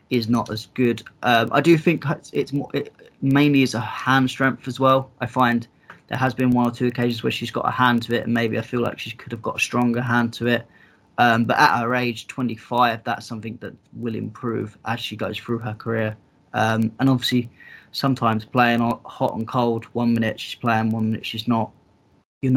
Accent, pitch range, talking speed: British, 110-125 Hz, 220 wpm